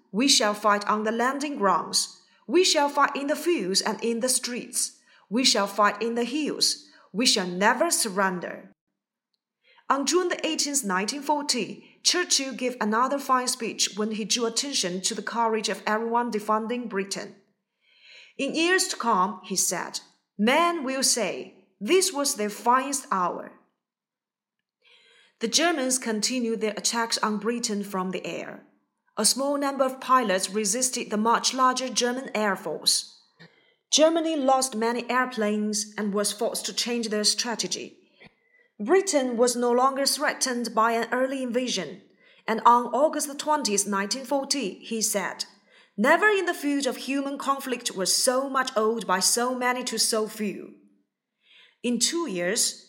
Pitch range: 215-275 Hz